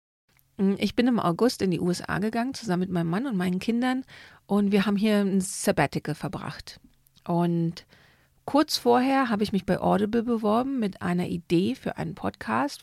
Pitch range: 180-220 Hz